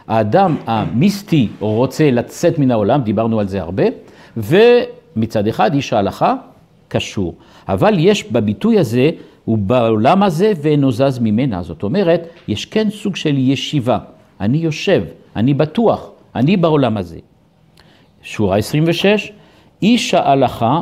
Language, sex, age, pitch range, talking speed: Hebrew, male, 50-69, 115-180 Hz, 120 wpm